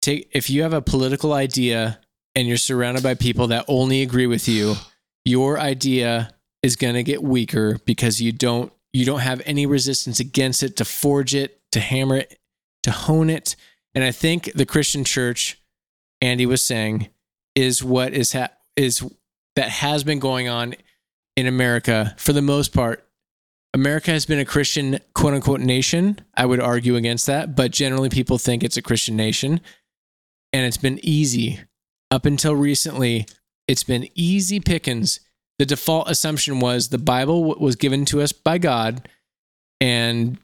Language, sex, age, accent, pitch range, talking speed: English, male, 20-39, American, 120-140 Hz, 170 wpm